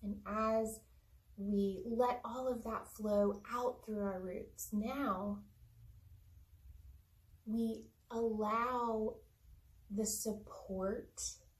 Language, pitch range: English, 190-225 Hz